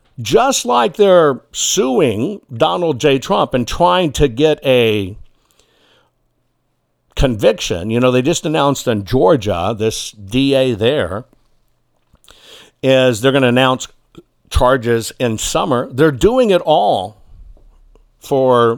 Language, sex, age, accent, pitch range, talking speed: English, male, 60-79, American, 120-155 Hz, 115 wpm